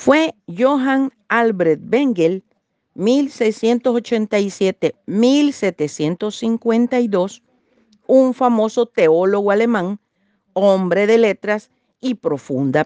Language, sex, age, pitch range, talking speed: Spanish, female, 50-69, 195-255 Hz, 65 wpm